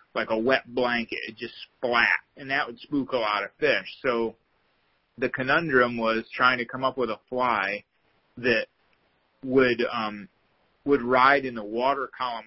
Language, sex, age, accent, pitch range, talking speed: English, male, 30-49, American, 115-140 Hz, 165 wpm